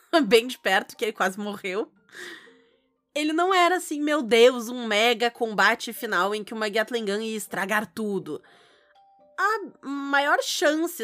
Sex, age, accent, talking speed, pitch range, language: female, 20-39, Brazilian, 150 wpm, 200-285 Hz, Portuguese